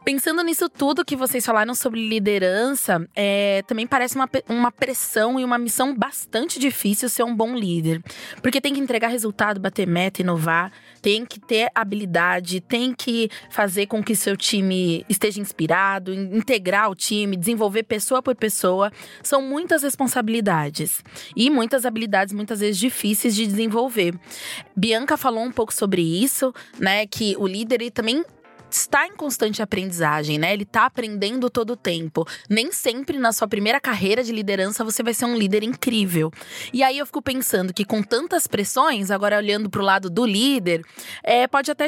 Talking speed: 165 wpm